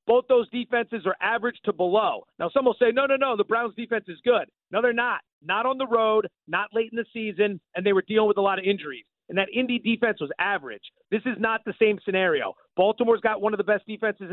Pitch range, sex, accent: 190-225 Hz, male, American